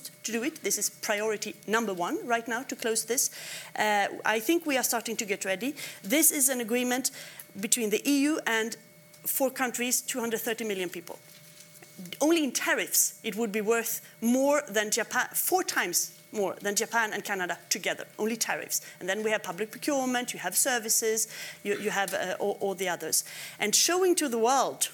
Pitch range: 200-250 Hz